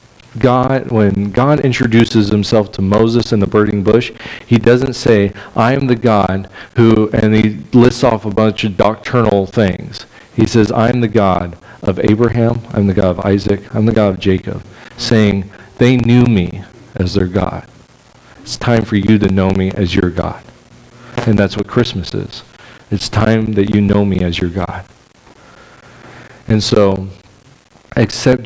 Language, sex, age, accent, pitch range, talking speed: English, male, 40-59, American, 100-120 Hz, 165 wpm